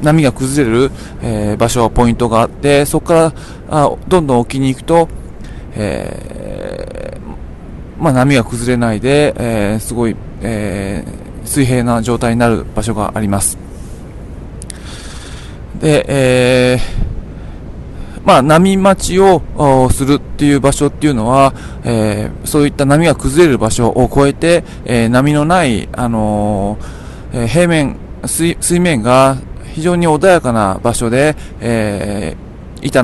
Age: 20-39